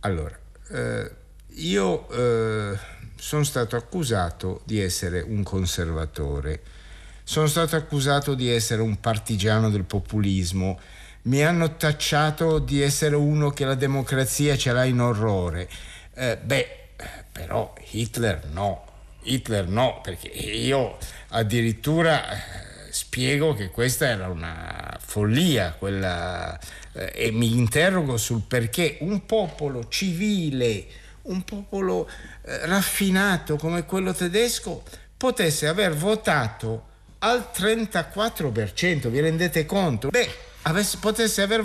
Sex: male